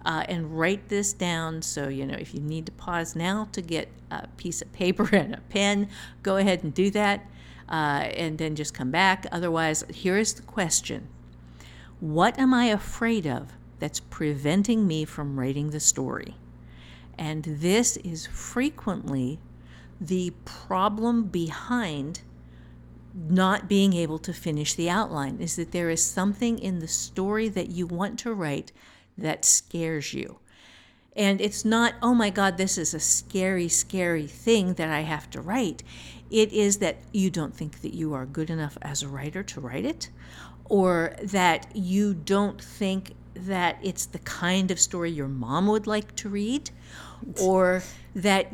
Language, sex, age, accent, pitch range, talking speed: English, female, 50-69, American, 150-200 Hz, 165 wpm